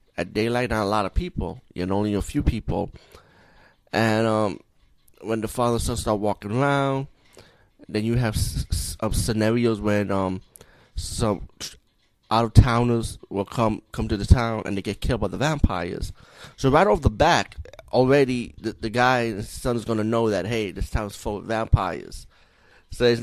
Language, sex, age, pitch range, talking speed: English, male, 20-39, 95-115 Hz, 190 wpm